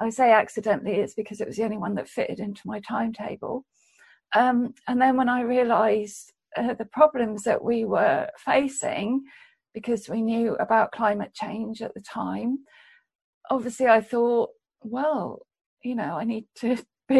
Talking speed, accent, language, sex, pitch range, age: 160 wpm, British, English, female, 215-255 Hz, 50-69